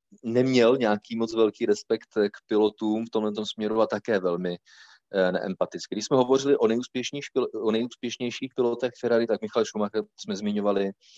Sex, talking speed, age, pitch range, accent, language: male, 155 wpm, 30-49, 100-120 Hz, native, Czech